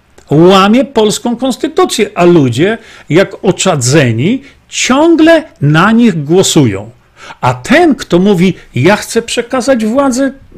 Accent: native